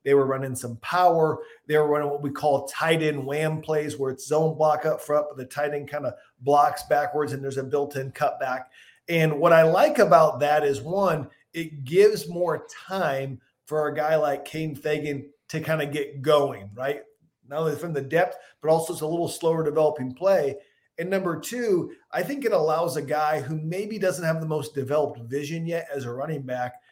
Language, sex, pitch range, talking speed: English, male, 145-180 Hz, 205 wpm